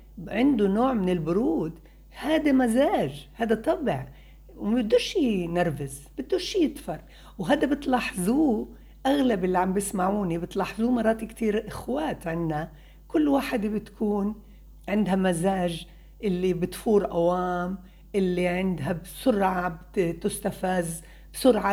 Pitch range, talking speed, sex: 180-255 Hz, 100 wpm, female